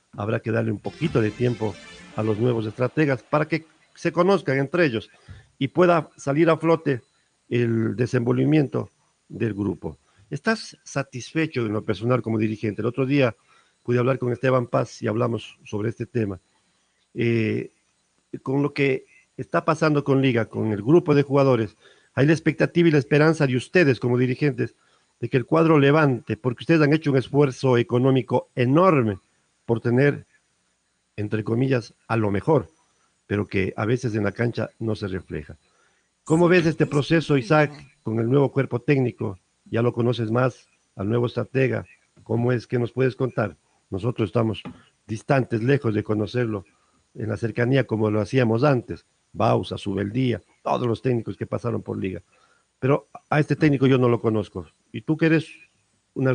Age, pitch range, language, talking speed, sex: 50-69, 110-140 Hz, Spanish, 165 wpm, male